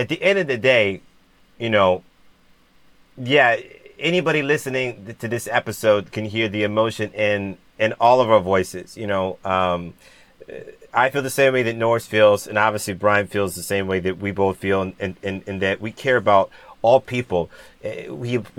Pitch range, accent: 105-145 Hz, American